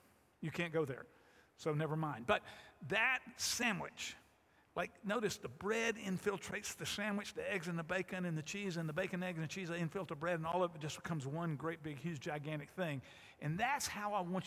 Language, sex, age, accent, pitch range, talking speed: English, male, 50-69, American, 155-195 Hz, 220 wpm